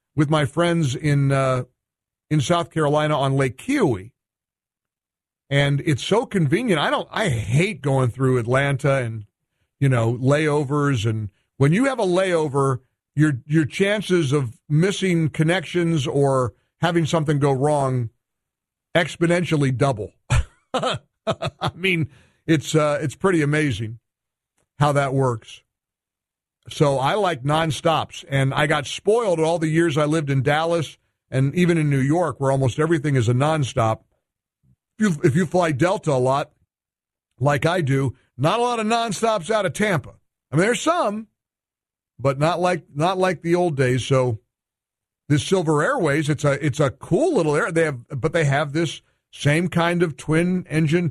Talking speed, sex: 155 wpm, male